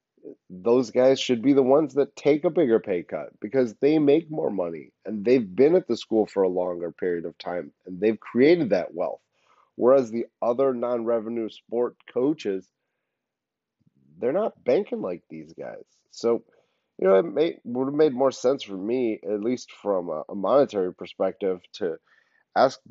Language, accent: English, American